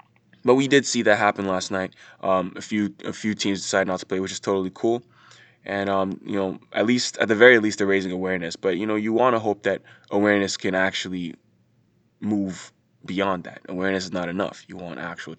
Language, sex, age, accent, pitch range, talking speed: English, male, 20-39, American, 95-120 Hz, 220 wpm